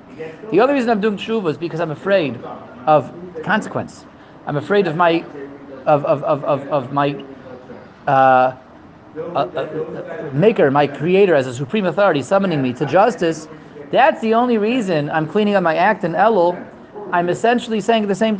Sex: male